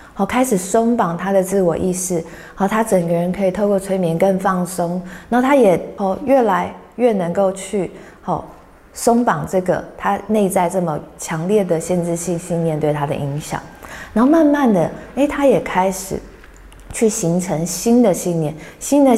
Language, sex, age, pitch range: Chinese, female, 20-39, 165-215 Hz